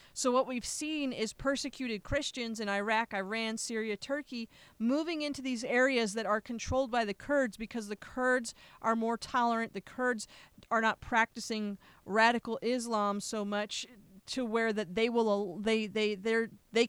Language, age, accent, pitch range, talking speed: English, 30-49, American, 195-240 Hz, 160 wpm